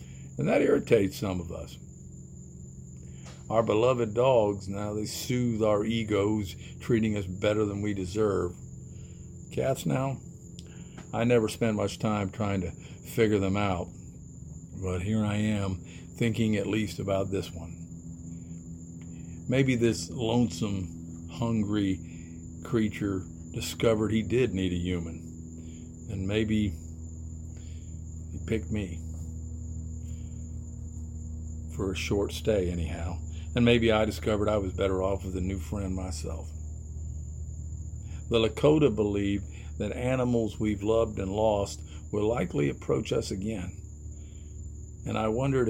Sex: male